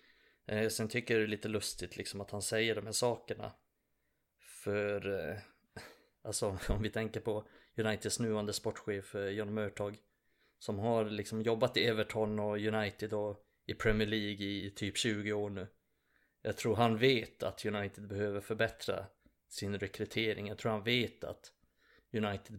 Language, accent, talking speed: Swedish, native, 155 wpm